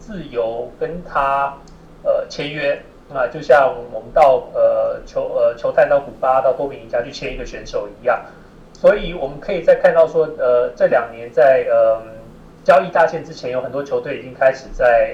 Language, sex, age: Chinese, male, 30-49